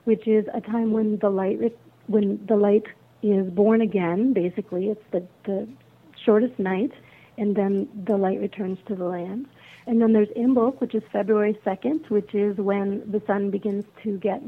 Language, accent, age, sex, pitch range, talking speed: English, American, 40-59, female, 195-215 Hz, 180 wpm